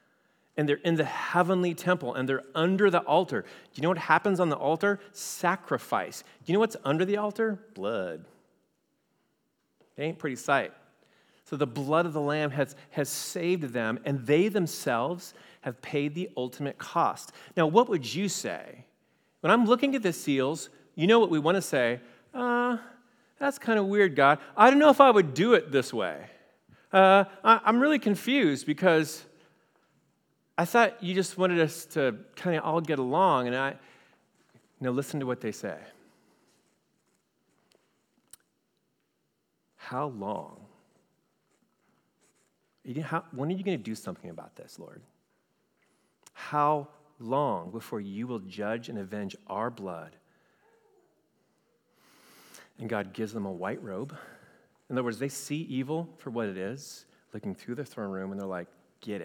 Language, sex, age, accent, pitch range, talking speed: English, male, 40-59, American, 135-195 Hz, 160 wpm